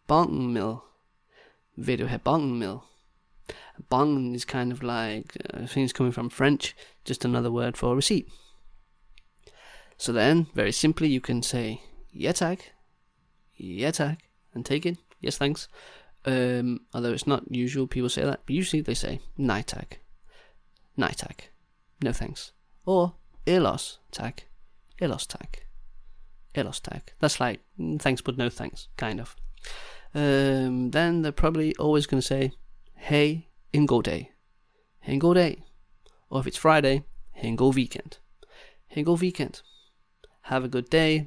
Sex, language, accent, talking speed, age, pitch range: male, Danish, British, 140 wpm, 20-39, 120-150 Hz